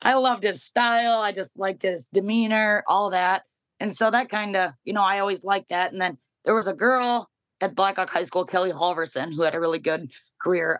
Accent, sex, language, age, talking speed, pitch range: American, female, English, 30-49, 230 wpm, 175-210 Hz